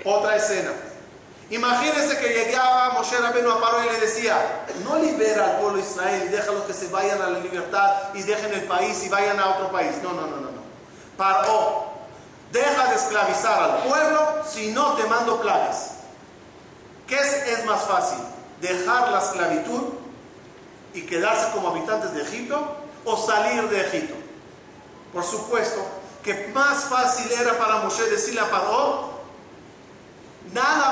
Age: 40-59